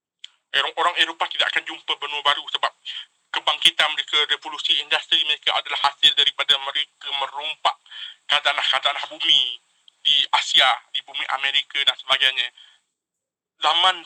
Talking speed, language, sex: 120 wpm, Malay, male